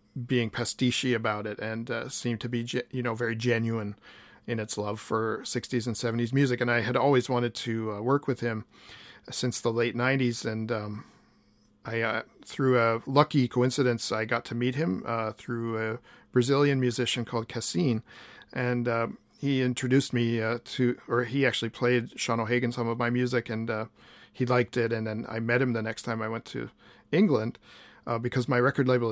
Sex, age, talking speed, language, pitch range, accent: male, 40-59, 195 wpm, English, 115-125 Hz, American